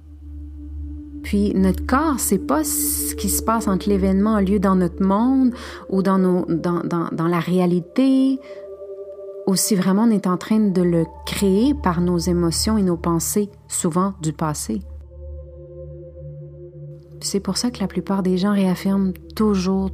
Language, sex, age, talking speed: French, female, 30-49, 165 wpm